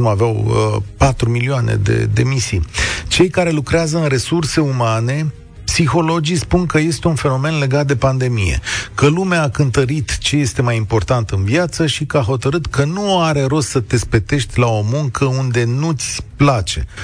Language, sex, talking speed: Romanian, male, 175 wpm